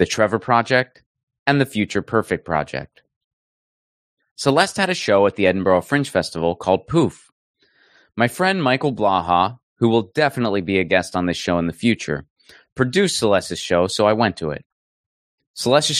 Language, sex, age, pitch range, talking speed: English, male, 20-39, 90-130 Hz, 165 wpm